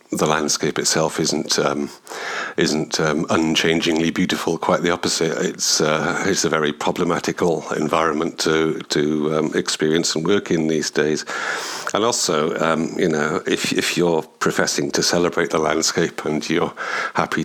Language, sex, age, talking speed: English, male, 60-79, 150 wpm